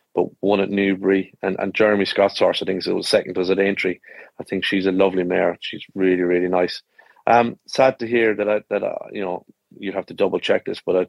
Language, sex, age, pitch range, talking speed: English, male, 30-49, 95-105 Hz, 245 wpm